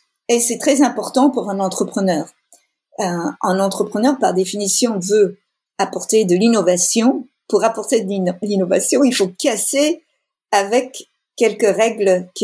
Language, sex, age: French, female, 50-69